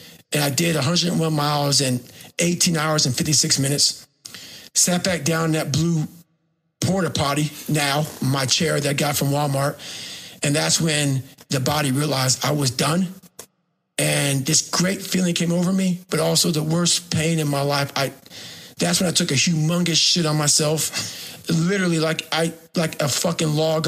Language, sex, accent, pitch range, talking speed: English, male, American, 145-175 Hz, 170 wpm